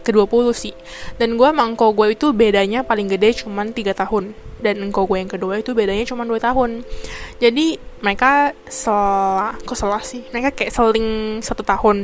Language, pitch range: Indonesian, 200-240 Hz